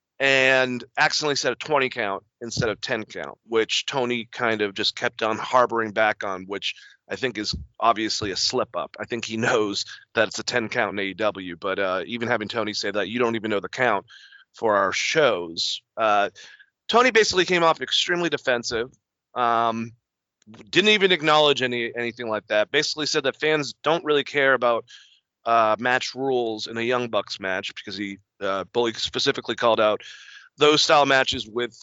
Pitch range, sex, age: 110-150 Hz, male, 30-49